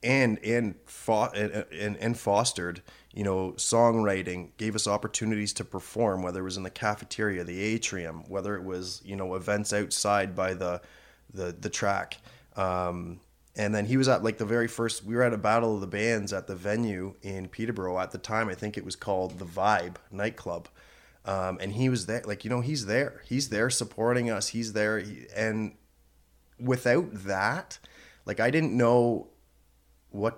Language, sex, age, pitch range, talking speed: English, male, 30-49, 95-110 Hz, 185 wpm